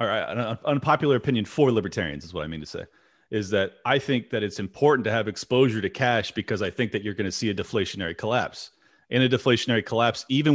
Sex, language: male, English